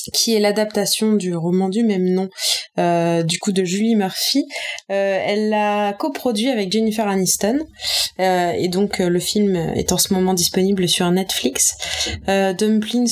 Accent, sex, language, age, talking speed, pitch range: French, female, French, 20-39, 165 wpm, 170-205 Hz